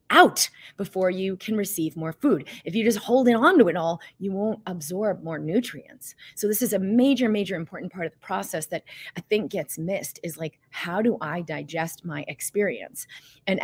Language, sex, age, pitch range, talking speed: English, female, 30-49, 160-200 Hz, 200 wpm